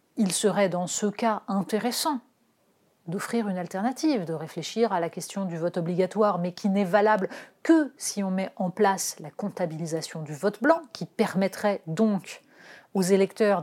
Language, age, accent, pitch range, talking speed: French, 40-59, French, 180-235 Hz, 165 wpm